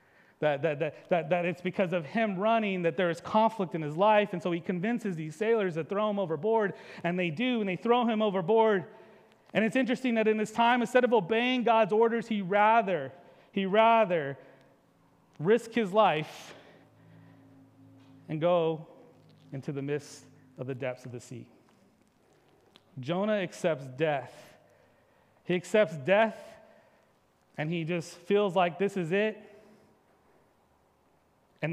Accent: American